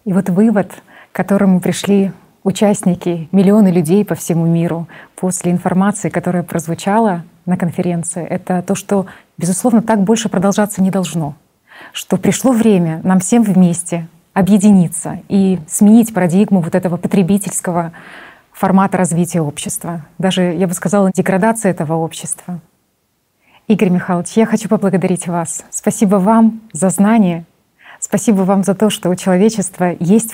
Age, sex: 20-39, female